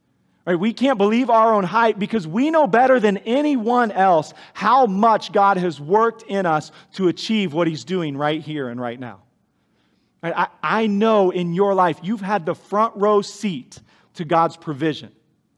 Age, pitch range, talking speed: 40-59, 155-215 Hz, 175 wpm